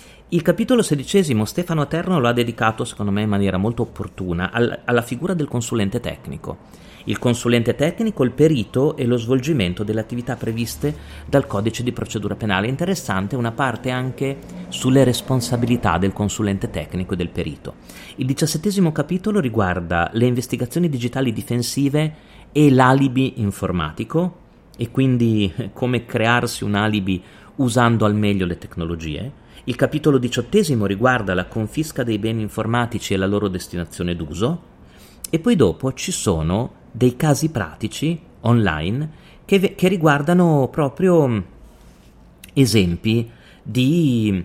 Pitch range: 105-135 Hz